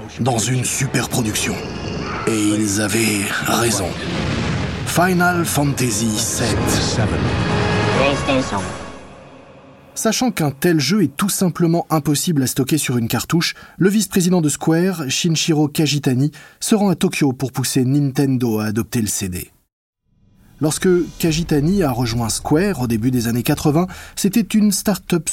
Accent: French